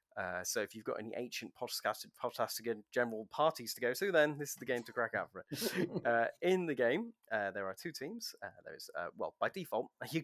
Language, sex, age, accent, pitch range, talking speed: English, male, 20-39, British, 105-150 Hz, 230 wpm